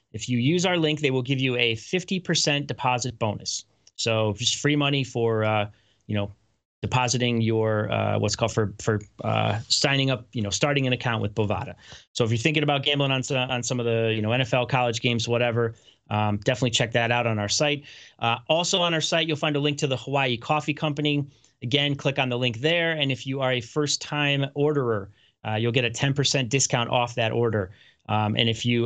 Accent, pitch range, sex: American, 115-145 Hz, male